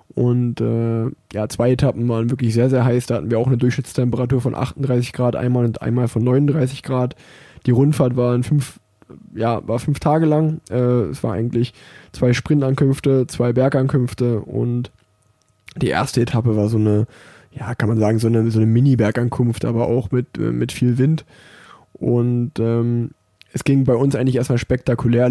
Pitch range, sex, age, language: 120-130 Hz, male, 20-39, German